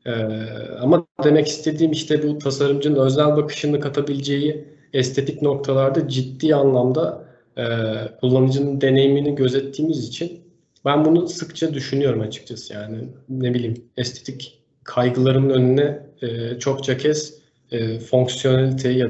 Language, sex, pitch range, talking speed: English, male, 125-145 Hz, 115 wpm